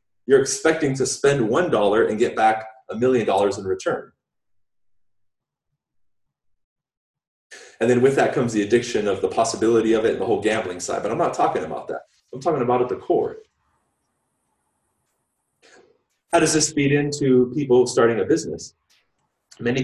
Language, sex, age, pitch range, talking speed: English, male, 30-49, 115-140 Hz, 160 wpm